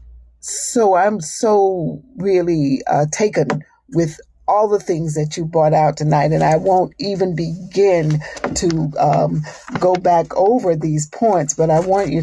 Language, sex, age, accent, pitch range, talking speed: English, female, 50-69, American, 150-190 Hz, 150 wpm